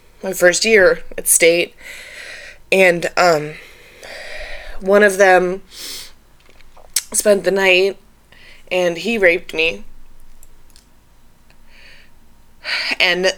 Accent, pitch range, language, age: American, 180-255 Hz, English, 20-39